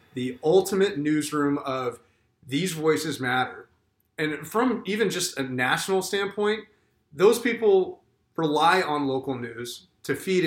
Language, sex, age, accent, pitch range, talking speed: English, male, 30-49, American, 130-160 Hz, 125 wpm